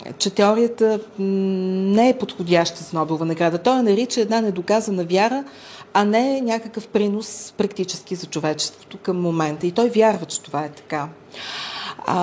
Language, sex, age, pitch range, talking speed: Bulgarian, female, 40-59, 160-200 Hz, 145 wpm